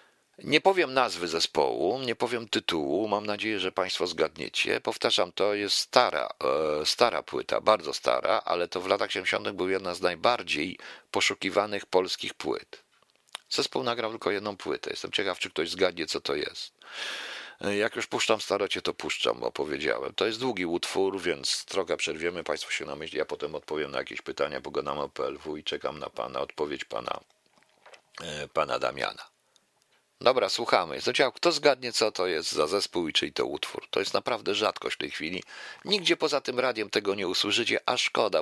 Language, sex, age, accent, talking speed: Polish, male, 50-69, native, 175 wpm